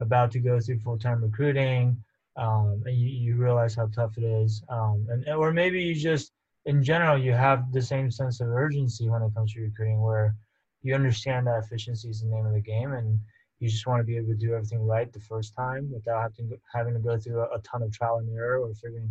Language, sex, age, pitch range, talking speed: English, male, 20-39, 115-135 Hz, 225 wpm